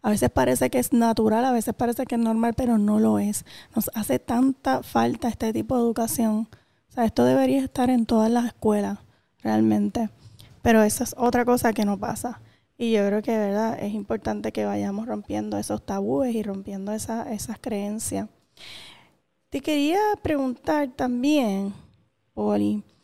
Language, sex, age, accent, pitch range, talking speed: Spanish, female, 10-29, American, 205-255 Hz, 165 wpm